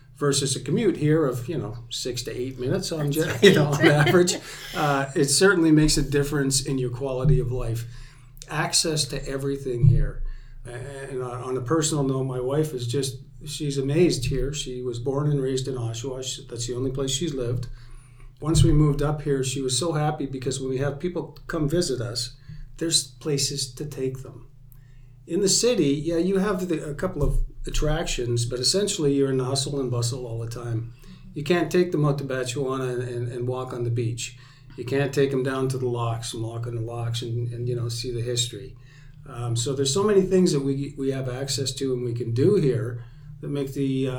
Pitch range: 125-145 Hz